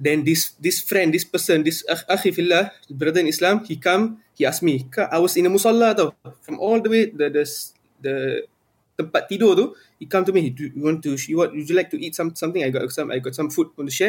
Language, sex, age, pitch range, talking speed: Malay, male, 20-39, 135-185 Hz, 255 wpm